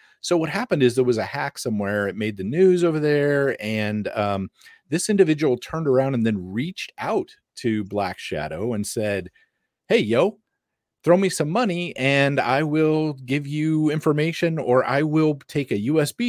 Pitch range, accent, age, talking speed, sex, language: 115-155 Hz, American, 40-59, 175 wpm, male, English